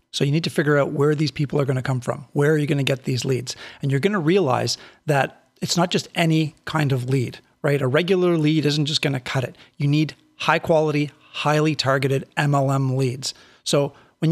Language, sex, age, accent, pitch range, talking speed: English, male, 40-59, American, 140-165 Hz, 230 wpm